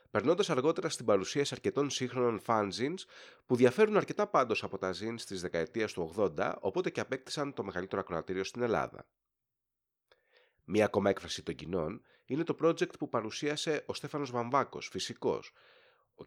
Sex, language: male, Greek